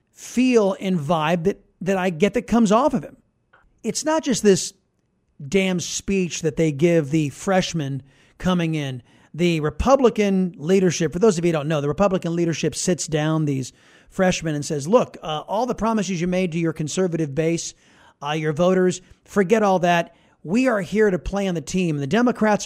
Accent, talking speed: American, 185 wpm